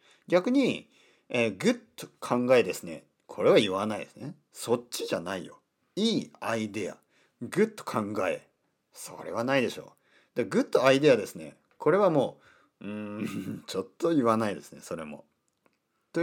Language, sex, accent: Japanese, male, native